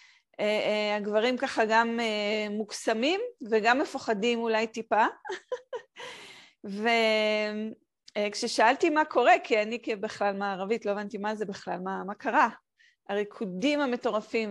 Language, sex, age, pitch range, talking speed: Hebrew, female, 30-49, 210-275 Hz, 120 wpm